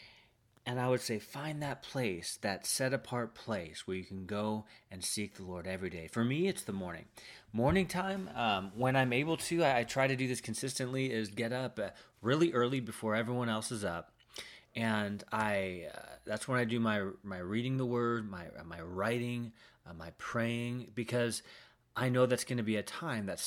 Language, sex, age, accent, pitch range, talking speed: English, male, 30-49, American, 105-125 Hz, 200 wpm